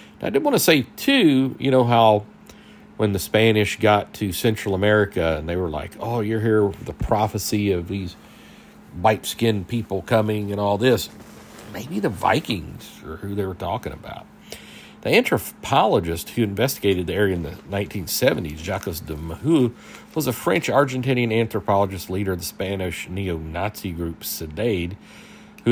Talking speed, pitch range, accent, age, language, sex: 155 wpm, 90-125 Hz, American, 50-69, English, male